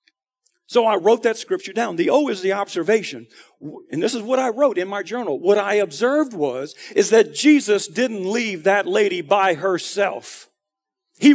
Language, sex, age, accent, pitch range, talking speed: English, male, 50-69, American, 195-275 Hz, 180 wpm